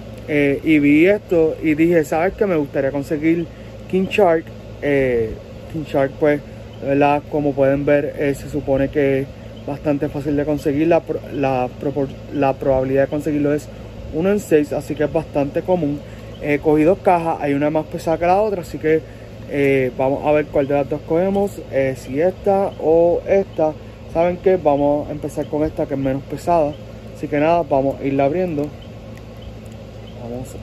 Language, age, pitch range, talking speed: Spanish, 30-49, 135-160 Hz, 180 wpm